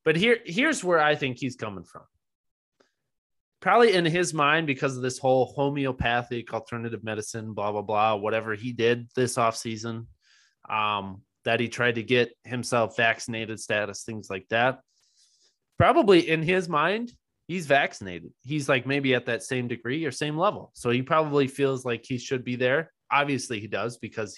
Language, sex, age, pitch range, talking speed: English, male, 20-39, 115-145 Hz, 170 wpm